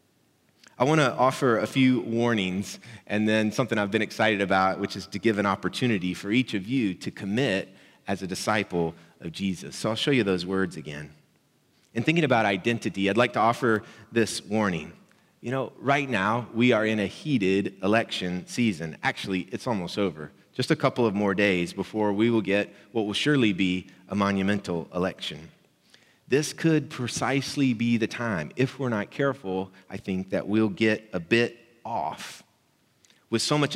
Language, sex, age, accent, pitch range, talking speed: English, male, 30-49, American, 95-120 Hz, 180 wpm